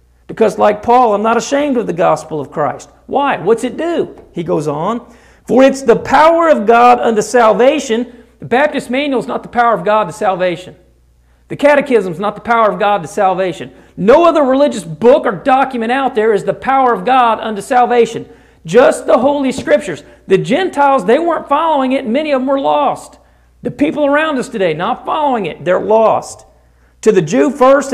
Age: 40-59